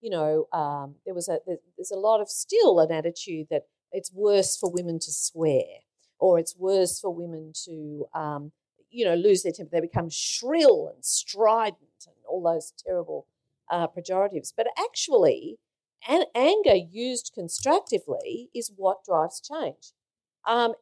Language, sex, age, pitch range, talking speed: English, female, 50-69, 175-265 Hz, 155 wpm